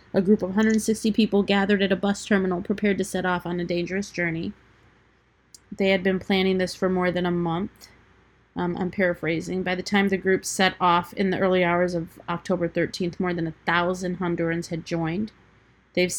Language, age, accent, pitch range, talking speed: English, 30-49, American, 180-205 Hz, 195 wpm